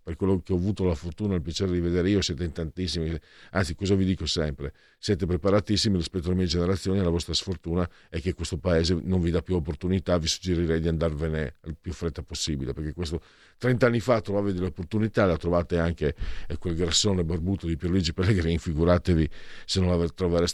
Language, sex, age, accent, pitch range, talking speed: Italian, male, 50-69, native, 85-115 Hz, 195 wpm